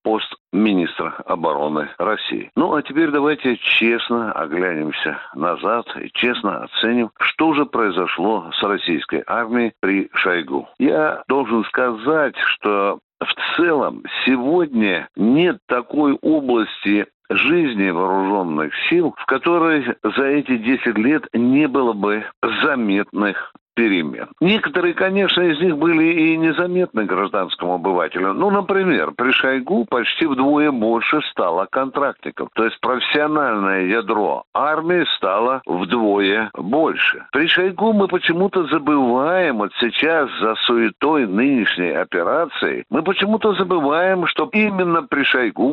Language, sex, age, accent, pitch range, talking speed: Russian, male, 60-79, native, 110-175 Hz, 120 wpm